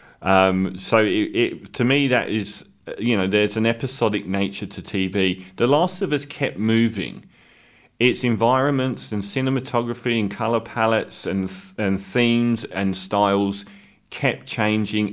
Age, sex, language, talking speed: 40-59, male, English, 145 wpm